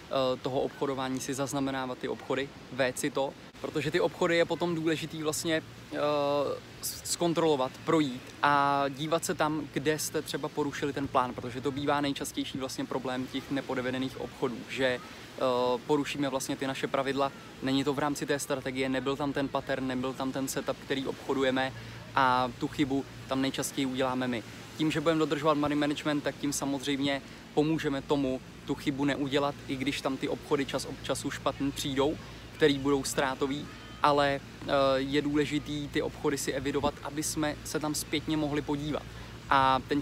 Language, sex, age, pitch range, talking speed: Czech, male, 20-39, 135-150 Hz, 160 wpm